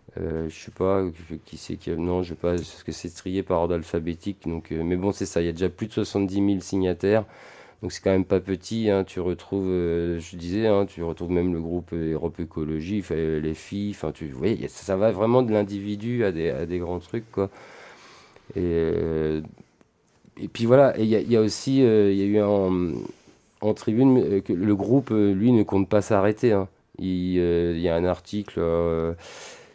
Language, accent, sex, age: French, French, male, 40-59